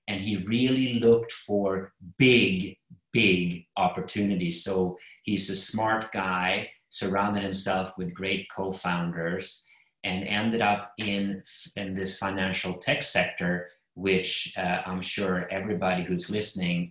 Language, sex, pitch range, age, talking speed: English, male, 90-105 Hz, 30-49, 120 wpm